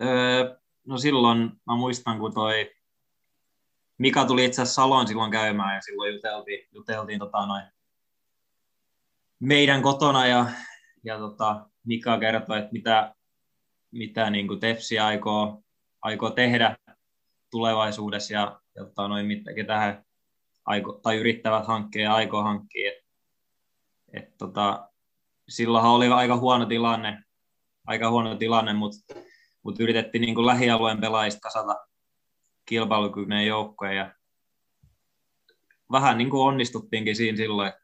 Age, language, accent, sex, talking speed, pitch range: 20-39, Finnish, native, male, 110 wpm, 105-115 Hz